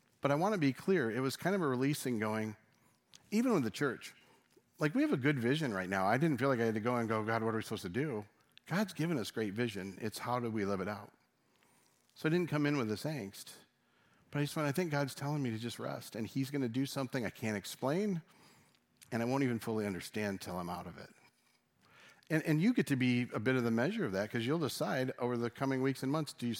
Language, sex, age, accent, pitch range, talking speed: English, male, 50-69, American, 115-150 Hz, 265 wpm